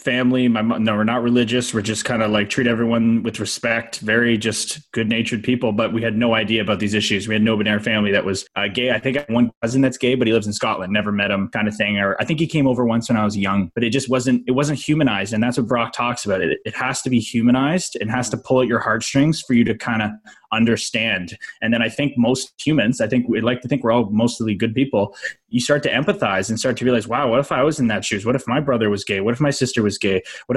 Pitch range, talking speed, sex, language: 110-125 Hz, 285 wpm, male, English